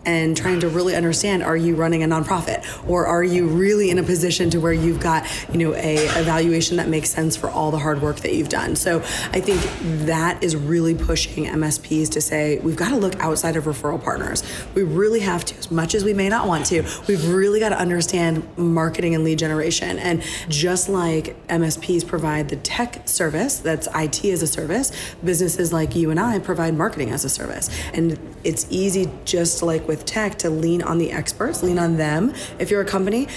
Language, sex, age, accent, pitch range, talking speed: English, female, 20-39, American, 155-180 Hz, 210 wpm